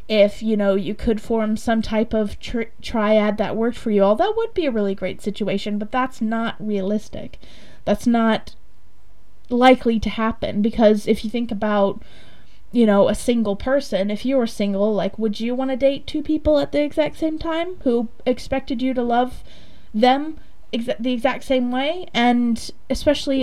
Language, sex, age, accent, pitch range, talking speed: English, female, 20-39, American, 210-255 Hz, 180 wpm